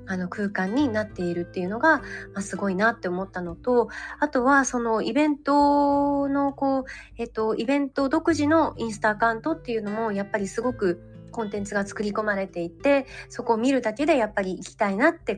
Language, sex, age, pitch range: Japanese, female, 20-39, 190-255 Hz